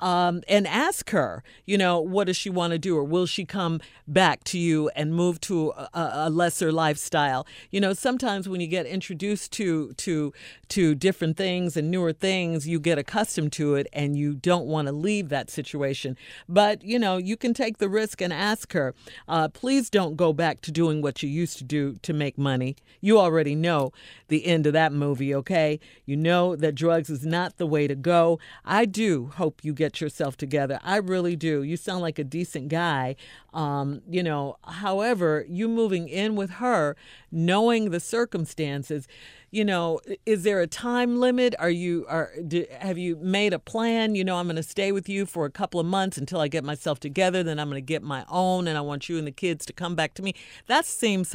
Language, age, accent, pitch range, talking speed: English, 50-69, American, 150-195 Hz, 210 wpm